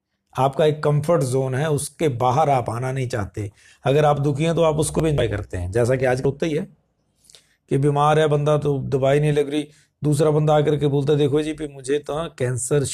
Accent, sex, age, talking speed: native, male, 50-69, 225 wpm